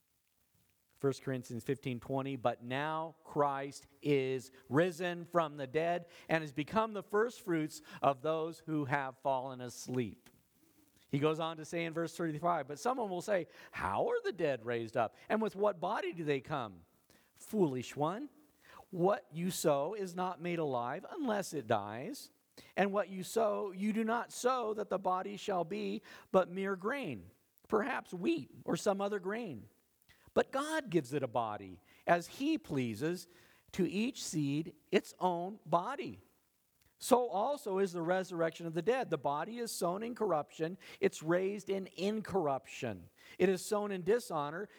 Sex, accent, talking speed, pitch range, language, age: male, American, 160 wpm, 150-215 Hz, English, 40-59